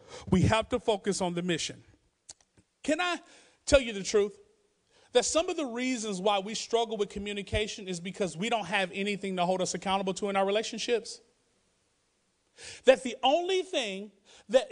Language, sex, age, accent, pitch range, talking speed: English, male, 40-59, American, 205-310 Hz, 170 wpm